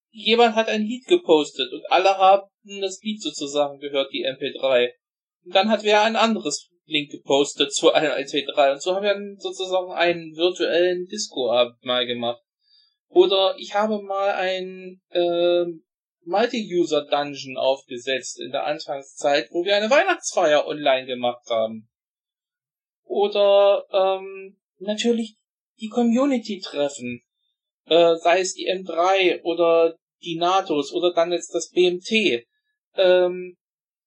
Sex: male